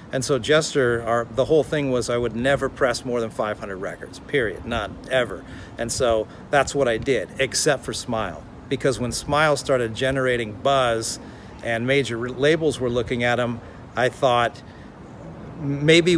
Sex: male